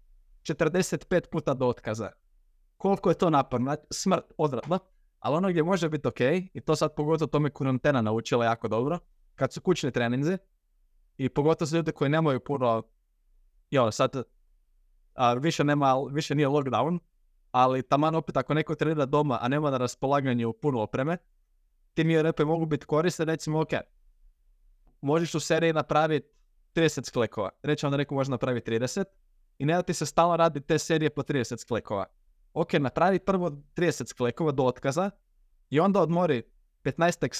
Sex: male